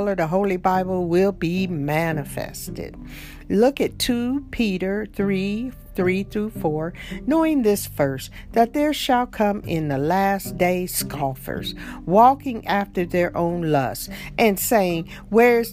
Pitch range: 160-230 Hz